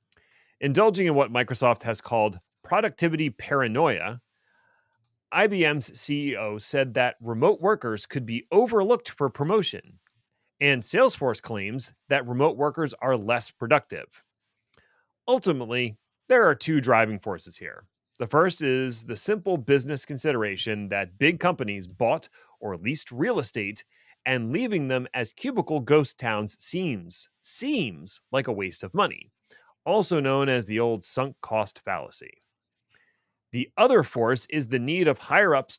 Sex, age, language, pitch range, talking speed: male, 30-49, English, 115-165 Hz, 135 wpm